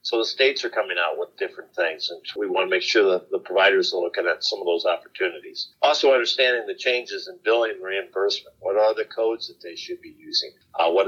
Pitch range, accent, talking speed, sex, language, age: 345-440 Hz, American, 240 wpm, male, English, 50-69